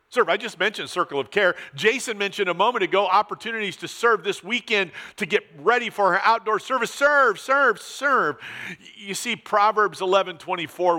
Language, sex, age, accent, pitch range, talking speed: English, male, 50-69, American, 150-195 Hz, 165 wpm